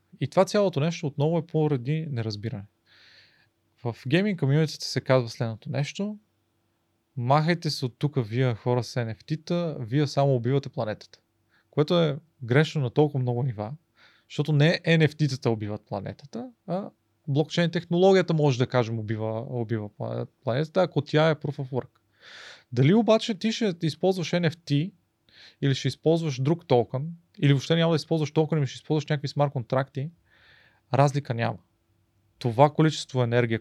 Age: 30-49